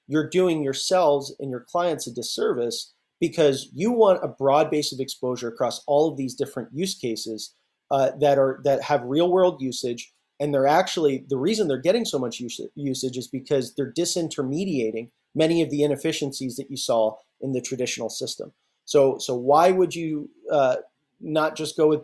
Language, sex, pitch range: English, male, 125-155 Hz